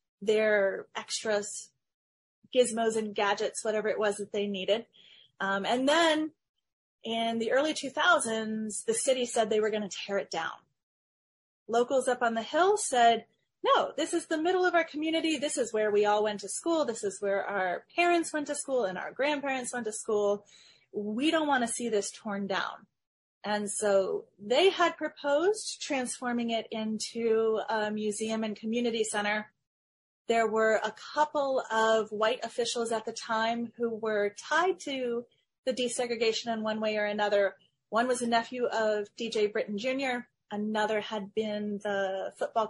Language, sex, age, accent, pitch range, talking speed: English, female, 30-49, American, 210-255 Hz, 165 wpm